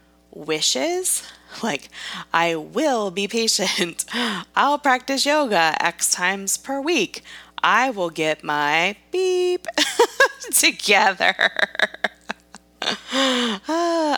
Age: 20-39